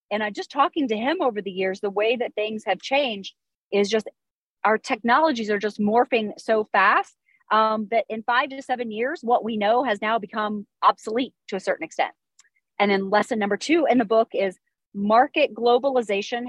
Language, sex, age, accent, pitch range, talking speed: English, female, 30-49, American, 200-250 Hz, 195 wpm